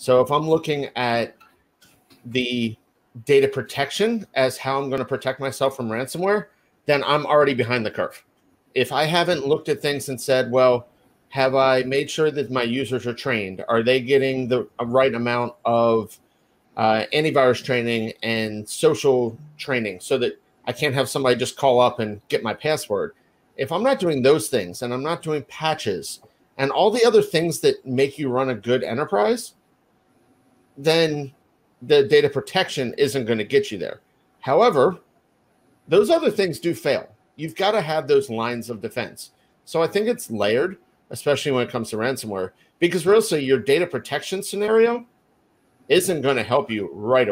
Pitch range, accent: 120-155 Hz, American